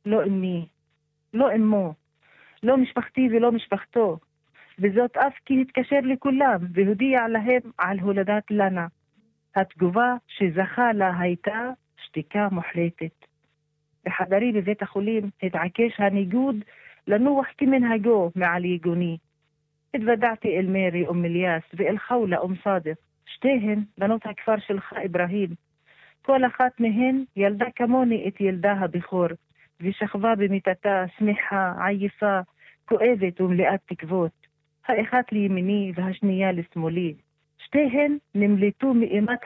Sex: female